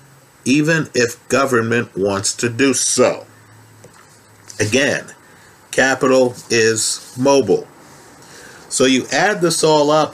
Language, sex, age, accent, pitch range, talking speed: English, male, 50-69, American, 120-145 Hz, 100 wpm